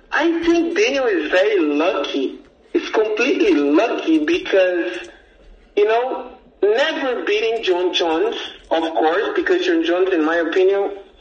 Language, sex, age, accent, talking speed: English, male, 50-69, American, 130 wpm